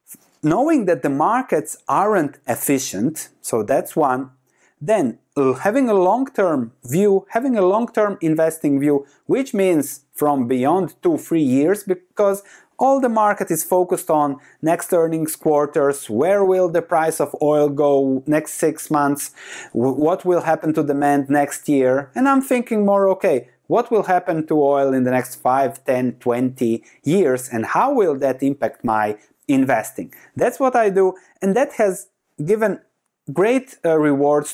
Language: English